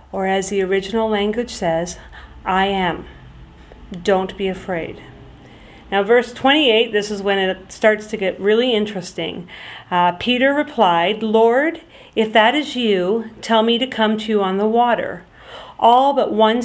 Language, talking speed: English, 155 wpm